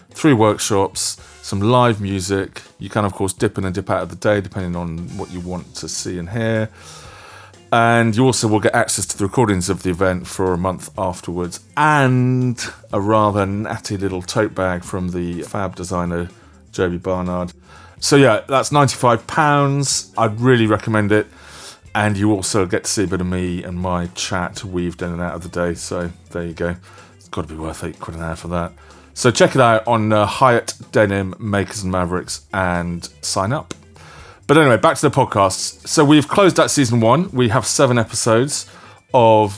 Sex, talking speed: male, 195 wpm